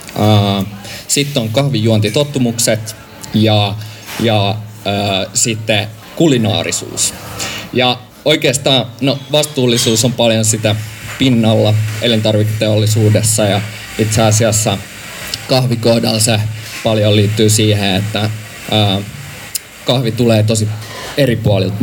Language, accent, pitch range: Finnish, native, 105-120 Hz